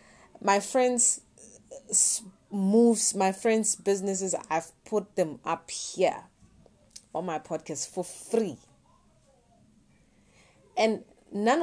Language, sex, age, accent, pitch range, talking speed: English, female, 20-39, South African, 165-230 Hz, 95 wpm